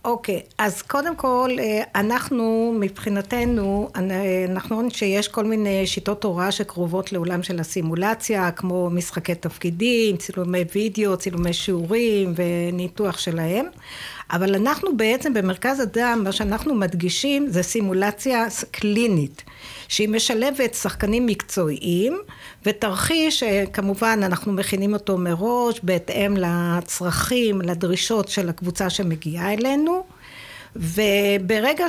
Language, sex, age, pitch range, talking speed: Hebrew, female, 50-69, 185-235 Hz, 105 wpm